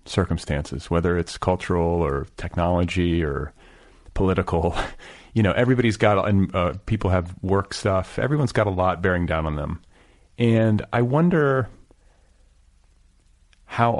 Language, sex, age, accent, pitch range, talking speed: English, male, 30-49, American, 85-110 Hz, 130 wpm